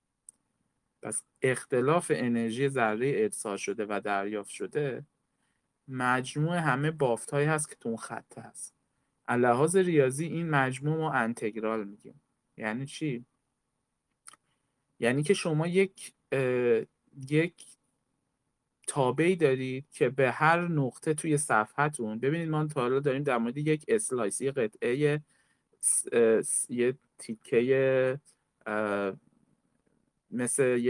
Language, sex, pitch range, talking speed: Persian, male, 115-150 Hz, 100 wpm